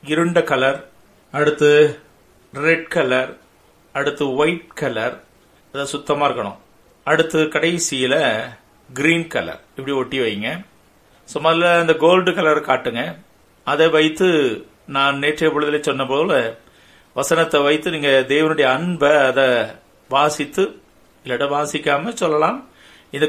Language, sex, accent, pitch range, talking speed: Tamil, male, native, 135-165 Hz, 90 wpm